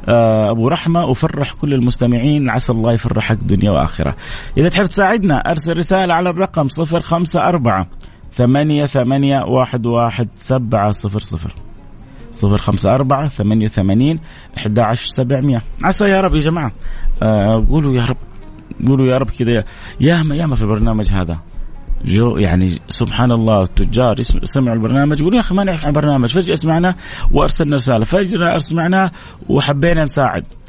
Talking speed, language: 115 wpm, Arabic